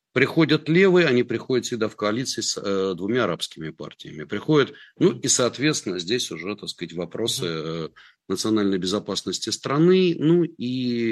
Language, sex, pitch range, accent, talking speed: Russian, male, 100-145 Hz, native, 145 wpm